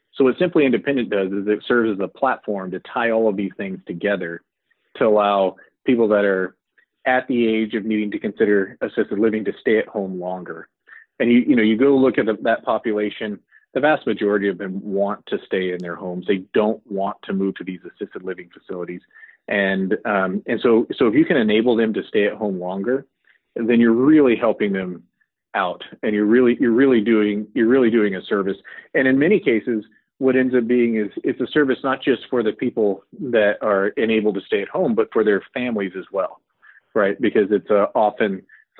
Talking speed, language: 210 wpm, English